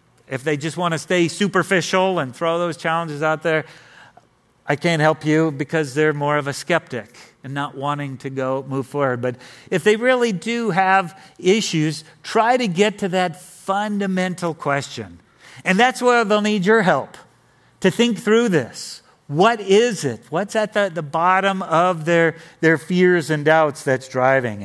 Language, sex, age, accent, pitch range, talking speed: English, male, 50-69, American, 155-210 Hz, 175 wpm